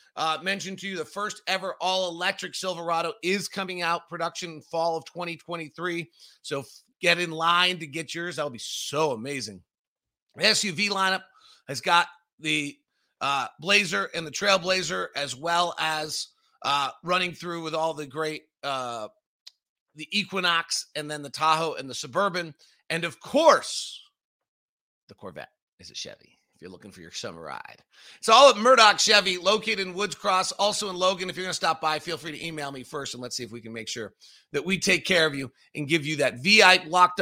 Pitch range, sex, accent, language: 160-195 Hz, male, American, English